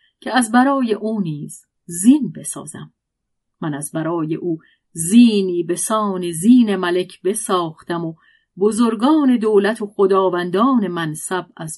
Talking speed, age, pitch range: 115 wpm, 40-59, 165-220 Hz